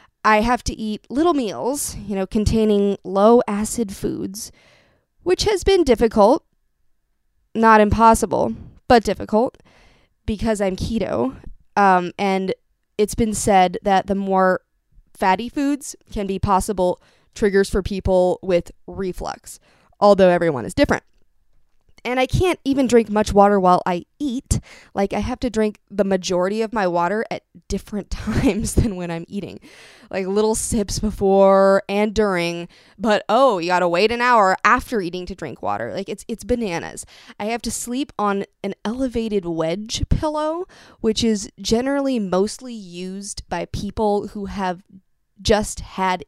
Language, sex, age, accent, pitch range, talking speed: English, female, 20-39, American, 190-230 Hz, 150 wpm